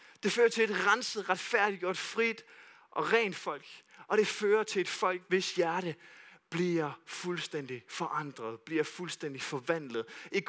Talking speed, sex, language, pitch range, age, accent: 150 wpm, male, Danish, 160-225 Hz, 30-49, native